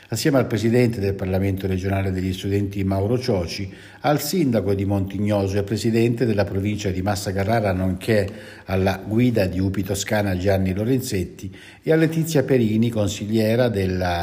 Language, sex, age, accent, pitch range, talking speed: Italian, male, 60-79, native, 95-125 Hz, 150 wpm